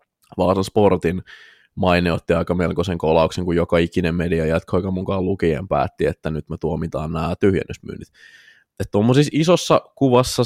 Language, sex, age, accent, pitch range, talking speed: Finnish, male, 20-39, native, 80-105 Hz, 140 wpm